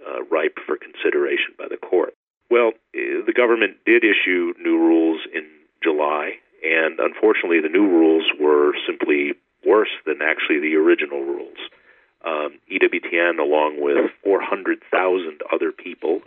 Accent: American